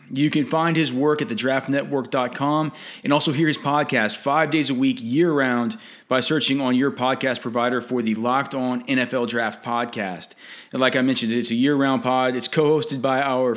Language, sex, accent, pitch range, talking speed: English, male, American, 125-150 Hz, 200 wpm